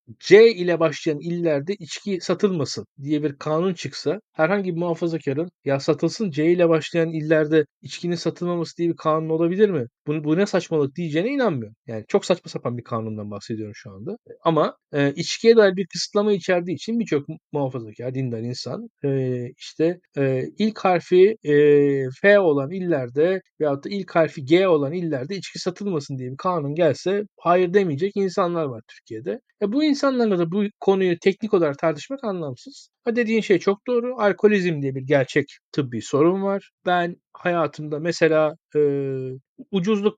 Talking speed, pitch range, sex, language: 160 wpm, 145-185 Hz, male, Turkish